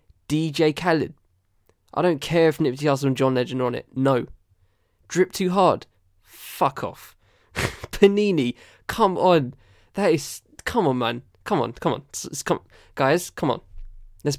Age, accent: 10-29, British